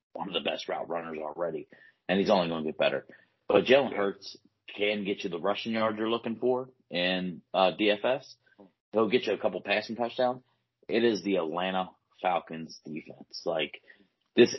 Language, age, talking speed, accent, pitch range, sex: English, 30-49, 180 wpm, American, 90-115 Hz, male